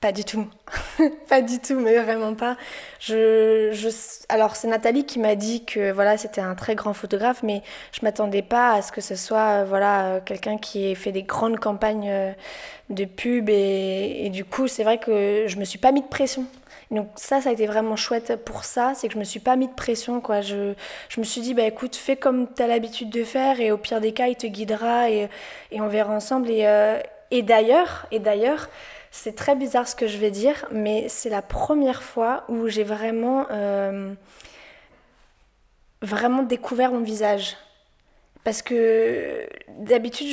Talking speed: 195 wpm